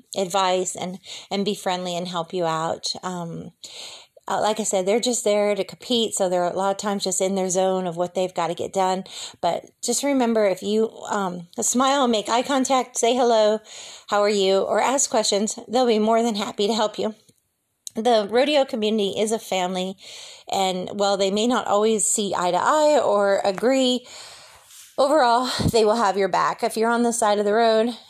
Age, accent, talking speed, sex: 30-49, American, 200 wpm, female